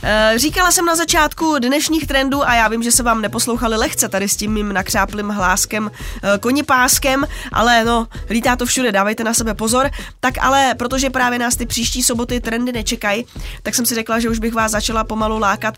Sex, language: female, Czech